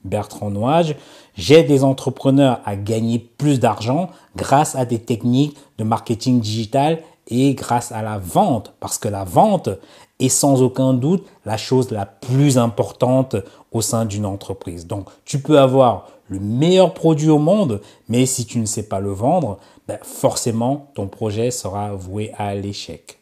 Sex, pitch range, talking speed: male, 105-140 Hz, 165 wpm